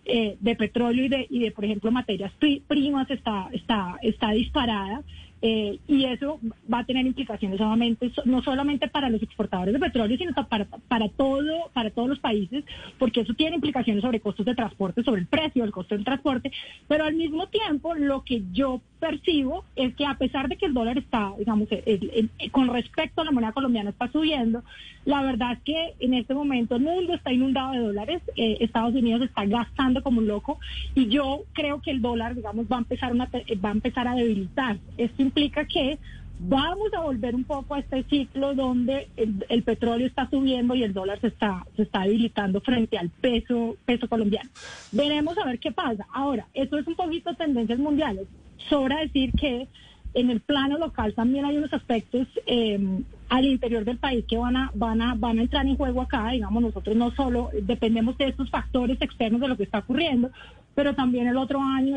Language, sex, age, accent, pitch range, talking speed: Spanish, female, 30-49, Colombian, 225-275 Hz, 195 wpm